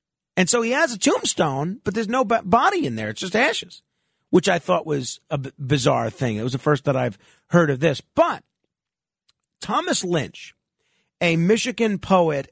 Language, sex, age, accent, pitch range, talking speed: English, male, 40-59, American, 160-220 Hz, 185 wpm